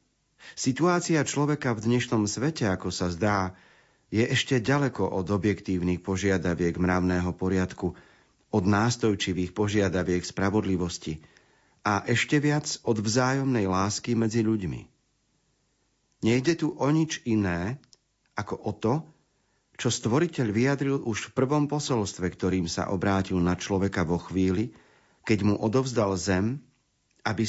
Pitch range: 95-125 Hz